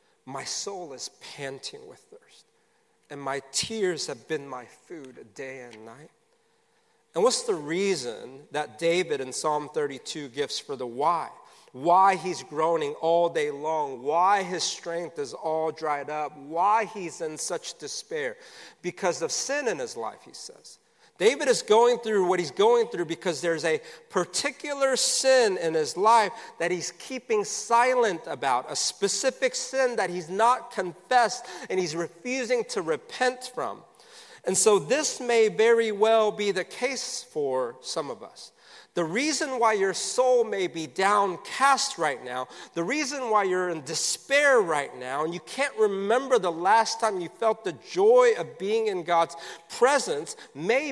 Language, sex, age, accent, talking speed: English, male, 40-59, American, 160 wpm